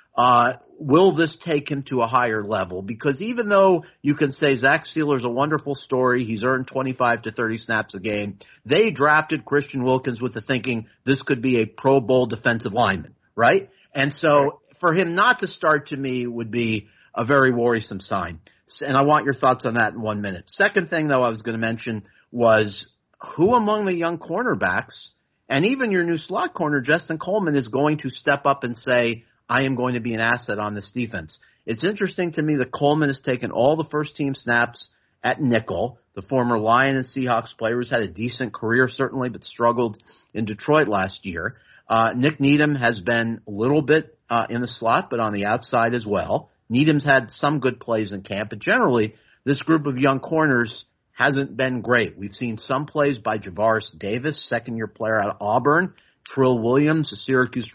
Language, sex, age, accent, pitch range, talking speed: English, male, 50-69, American, 115-145 Hz, 200 wpm